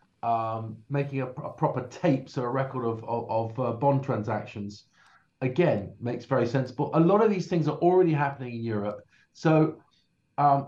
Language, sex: English, male